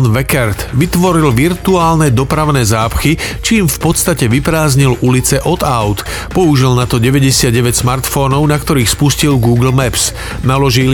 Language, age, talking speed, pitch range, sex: Slovak, 40-59, 125 wpm, 120-150 Hz, male